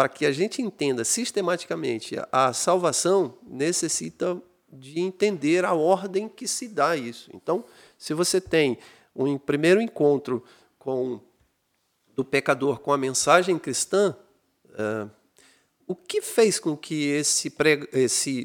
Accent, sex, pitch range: Brazilian, male, 135-195 Hz